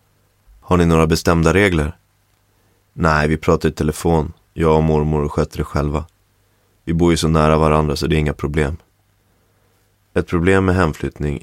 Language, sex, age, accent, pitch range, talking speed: Swedish, male, 30-49, native, 75-95 Hz, 165 wpm